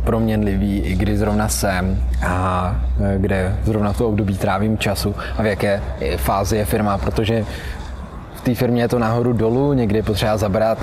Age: 20-39